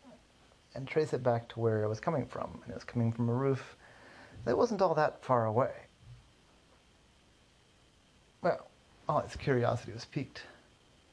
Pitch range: 115-130 Hz